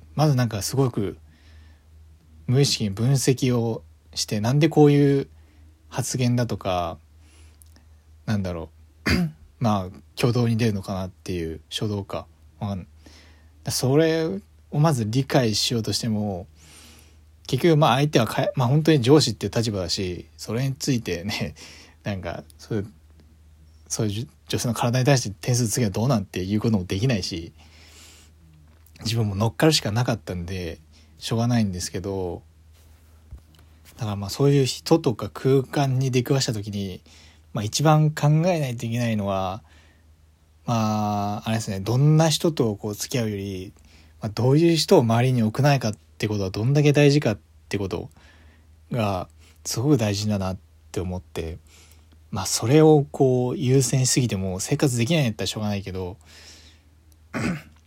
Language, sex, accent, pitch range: Japanese, male, native, 80-125 Hz